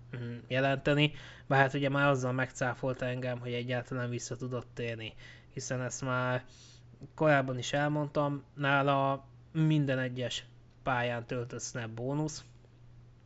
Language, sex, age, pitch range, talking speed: Hungarian, male, 20-39, 120-140 Hz, 115 wpm